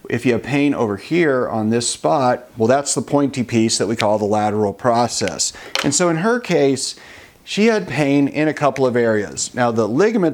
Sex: male